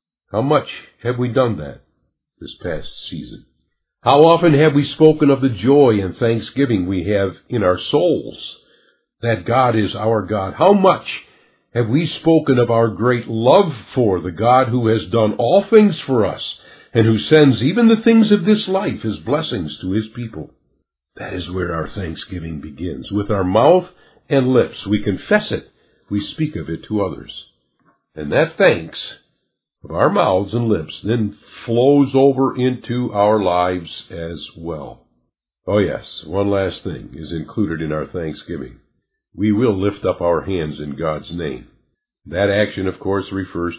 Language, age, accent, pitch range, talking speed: English, 50-69, American, 95-130 Hz, 165 wpm